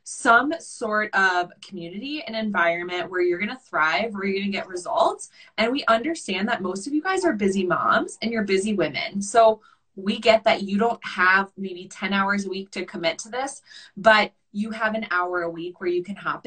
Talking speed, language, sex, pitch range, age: 215 wpm, English, female, 175-220 Hz, 20-39